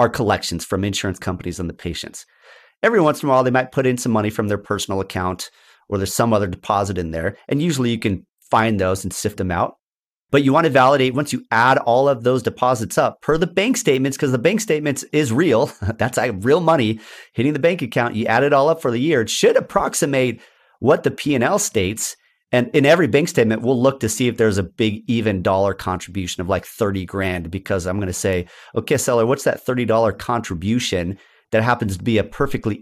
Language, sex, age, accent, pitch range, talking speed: English, male, 30-49, American, 95-125 Hz, 225 wpm